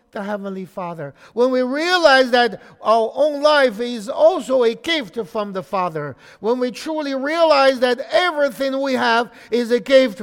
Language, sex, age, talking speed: English, male, 60-79, 160 wpm